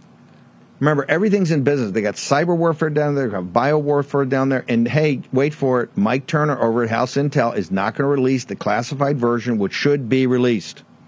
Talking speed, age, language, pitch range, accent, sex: 205 wpm, 50-69, English, 120-150 Hz, American, male